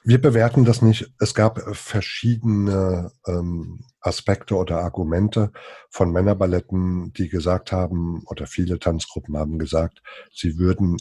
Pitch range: 80-105 Hz